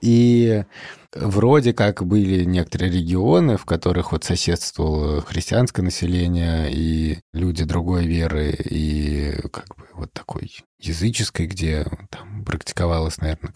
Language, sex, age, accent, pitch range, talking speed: Russian, male, 30-49, native, 80-100 Hz, 115 wpm